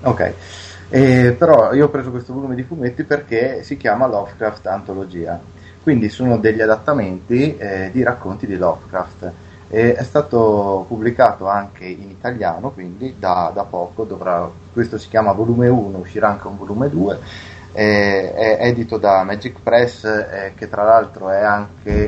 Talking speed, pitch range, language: 155 wpm, 95-115 Hz, Italian